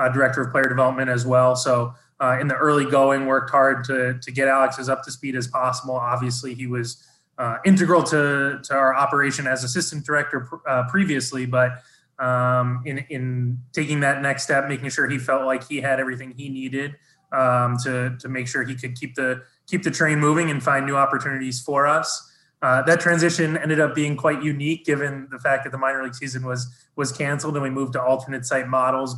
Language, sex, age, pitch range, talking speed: English, male, 20-39, 125-140 Hz, 210 wpm